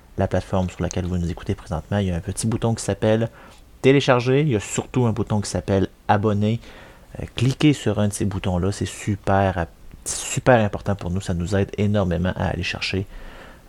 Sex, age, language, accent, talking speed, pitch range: male, 30-49, French, French, 200 wpm, 95-115 Hz